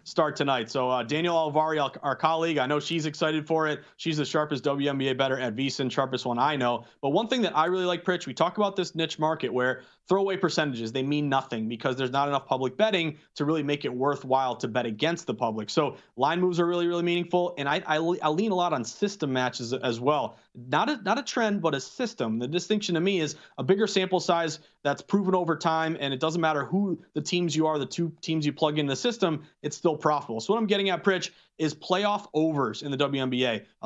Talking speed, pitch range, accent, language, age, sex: 235 wpm, 145-185 Hz, American, English, 30-49, male